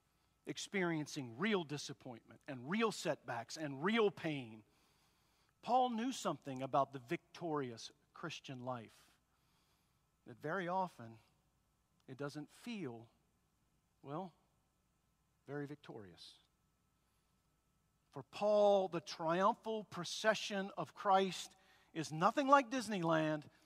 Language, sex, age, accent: English, male, 50-69, American